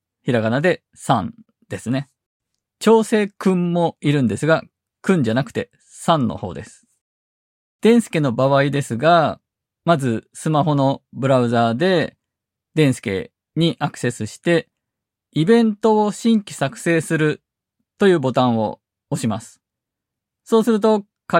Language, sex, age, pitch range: Japanese, male, 20-39, 120-180 Hz